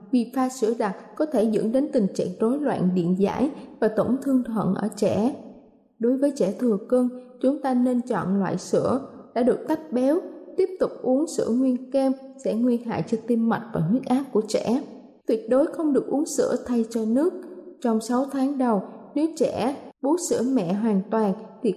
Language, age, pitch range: Vietnamese, 20-39, 220-270 Hz